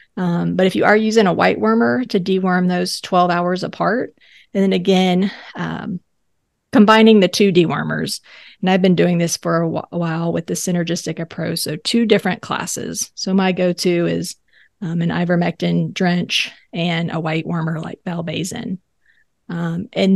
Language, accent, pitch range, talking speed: English, American, 175-210 Hz, 170 wpm